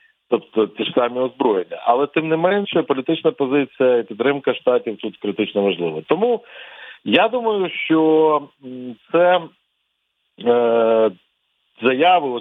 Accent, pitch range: native, 120-175 Hz